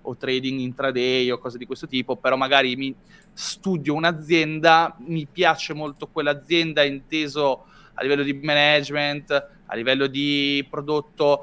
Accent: native